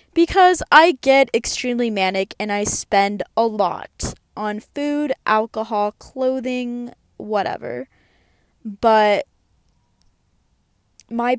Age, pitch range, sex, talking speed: 10-29, 195-240 Hz, female, 90 wpm